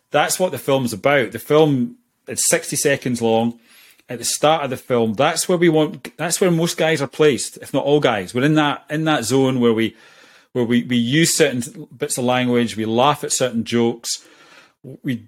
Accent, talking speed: British, 210 wpm